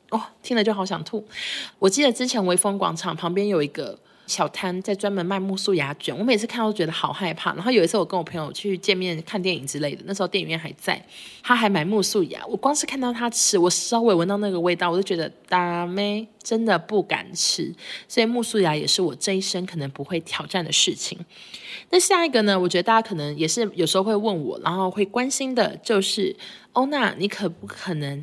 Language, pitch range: Chinese, 175-220 Hz